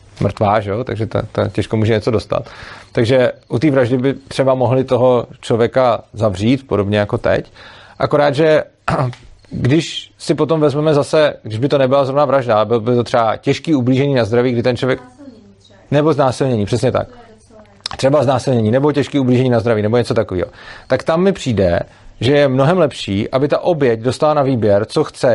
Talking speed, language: 180 wpm, Czech